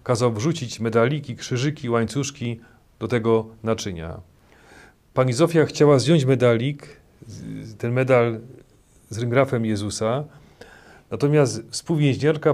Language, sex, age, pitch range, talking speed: Polish, male, 40-59, 115-140 Hz, 95 wpm